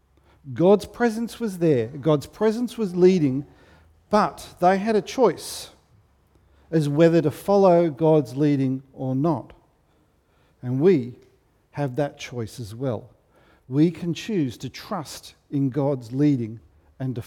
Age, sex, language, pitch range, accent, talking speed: 50-69, male, English, 130-175 Hz, Australian, 130 wpm